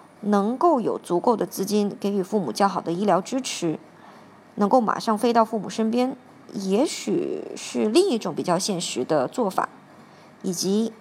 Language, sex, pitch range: Chinese, male, 190-235 Hz